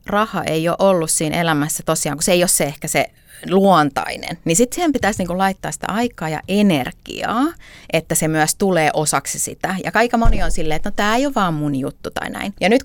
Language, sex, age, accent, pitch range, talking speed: Finnish, female, 30-49, native, 155-215 Hz, 220 wpm